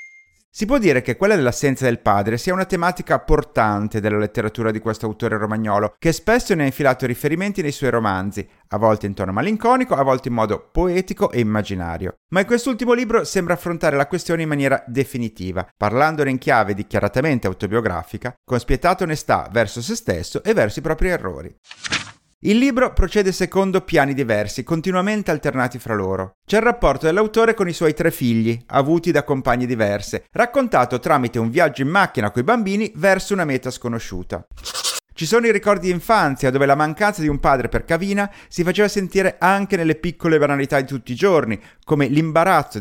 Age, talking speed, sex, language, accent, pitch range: 30-49, 180 wpm, male, Italian, native, 115-185 Hz